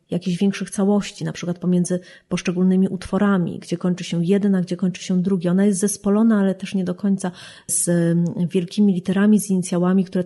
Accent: native